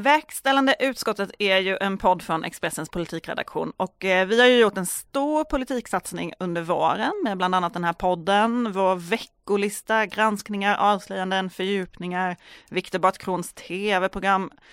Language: Swedish